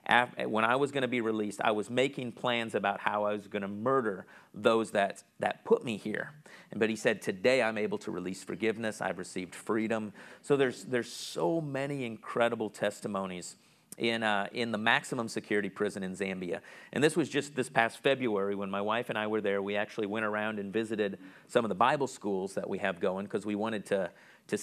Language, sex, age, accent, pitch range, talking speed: English, male, 40-59, American, 105-135 Hz, 210 wpm